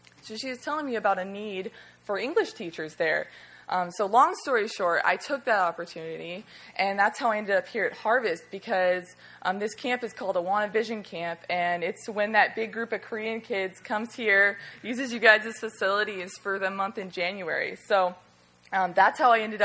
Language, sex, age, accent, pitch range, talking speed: English, female, 20-39, American, 185-230 Hz, 200 wpm